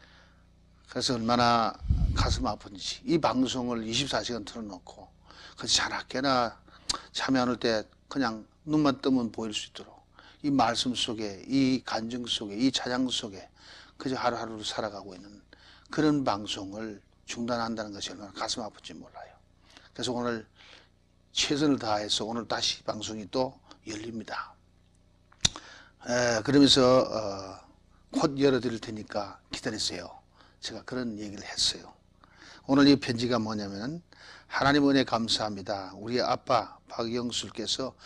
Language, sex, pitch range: Korean, male, 100-125 Hz